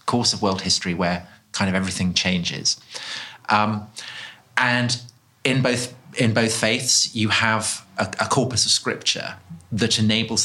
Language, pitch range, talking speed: English, 105-125 Hz, 140 wpm